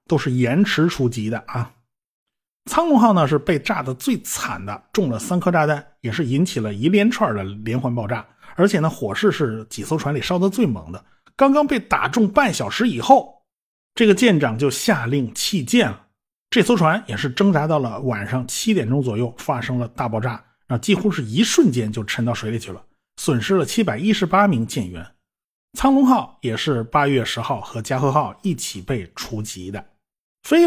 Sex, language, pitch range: male, Chinese, 125-190 Hz